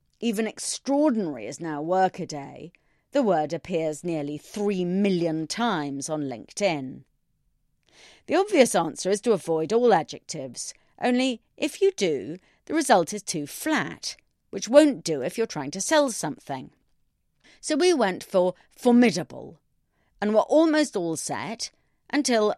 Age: 40-59